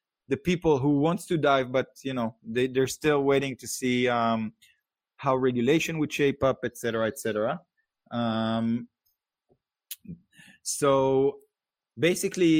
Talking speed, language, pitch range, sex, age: 135 wpm, English, 110-135 Hz, male, 20-39